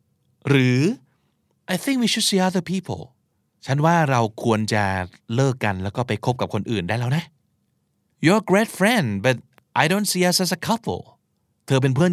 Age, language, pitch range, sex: 20-39, Thai, 110-170 Hz, male